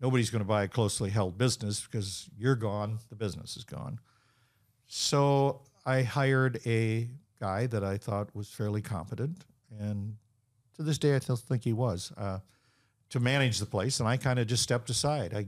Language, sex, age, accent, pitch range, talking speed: English, male, 50-69, American, 105-120 Hz, 185 wpm